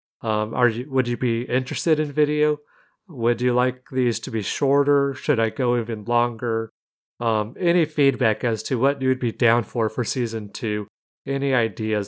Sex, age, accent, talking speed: male, 40-59, American, 180 wpm